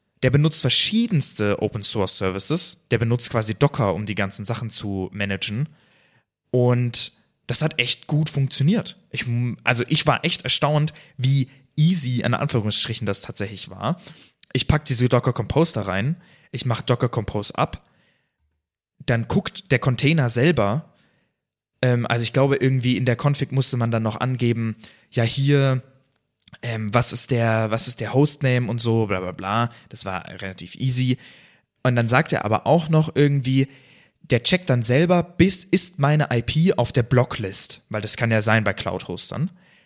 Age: 20-39